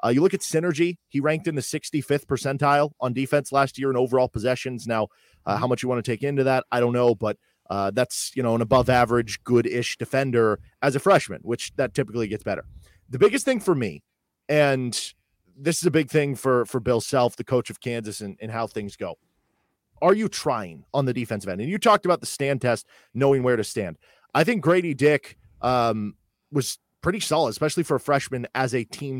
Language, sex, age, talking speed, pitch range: English, male, 30-49, 220 wpm, 115-145 Hz